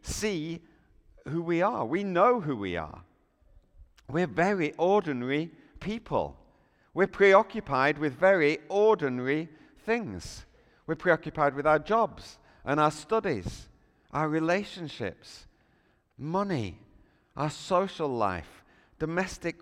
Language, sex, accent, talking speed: English, male, British, 105 wpm